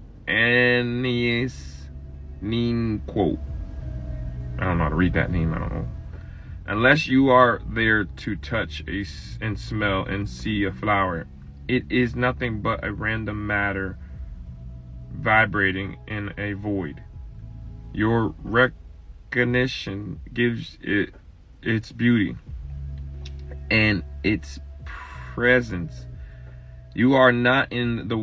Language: English